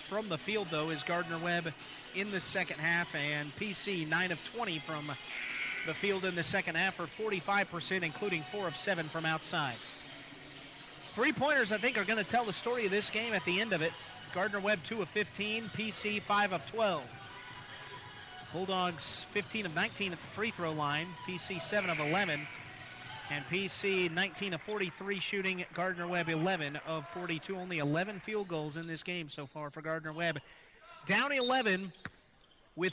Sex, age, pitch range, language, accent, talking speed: male, 30-49, 160-210 Hz, English, American, 170 wpm